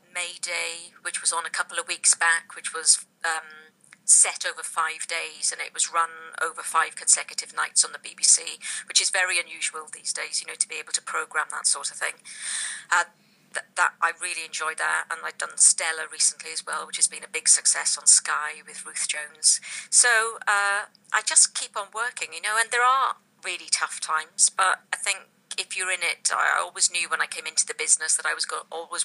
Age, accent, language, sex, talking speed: 40-59, British, English, female, 220 wpm